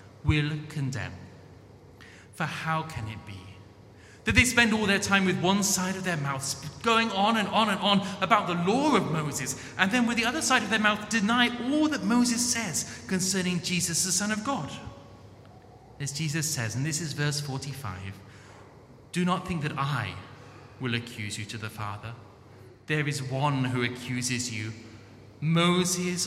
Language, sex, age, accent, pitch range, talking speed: English, male, 30-49, British, 110-160 Hz, 175 wpm